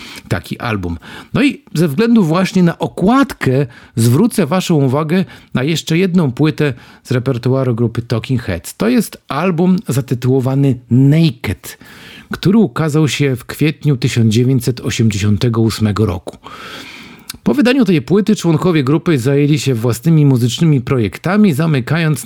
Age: 50-69